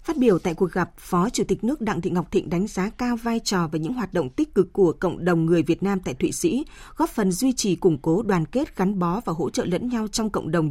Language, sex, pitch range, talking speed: Vietnamese, female, 175-230 Hz, 285 wpm